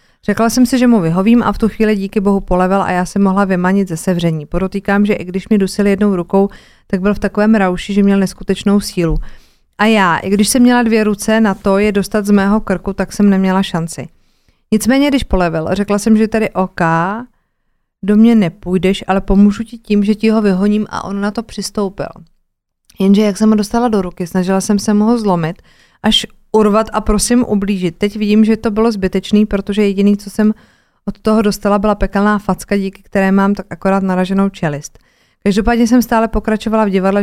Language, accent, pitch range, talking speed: Czech, native, 190-215 Hz, 205 wpm